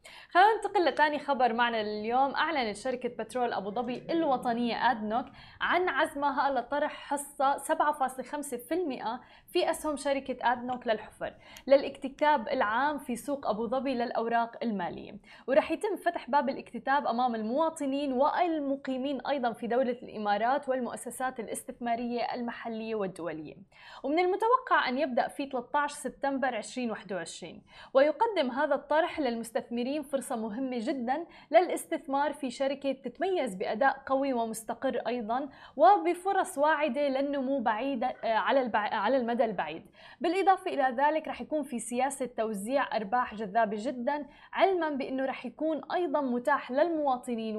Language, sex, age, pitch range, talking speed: Arabic, female, 20-39, 235-290 Hz, 120 wpm